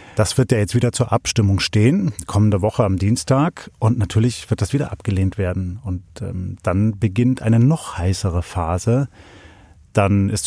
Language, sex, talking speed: German, male, 165 wpm